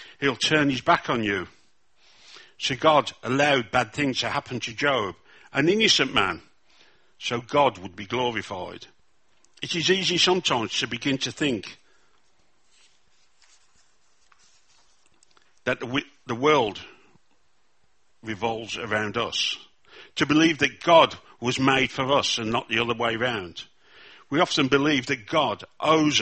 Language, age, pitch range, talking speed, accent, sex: English, 60-79, 110-140 Hz, 130 wpm, British, male